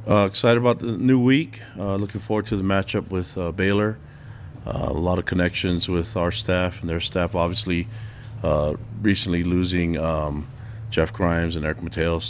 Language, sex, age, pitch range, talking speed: English, male, 40-59, 80-110 Hz, 175 wpm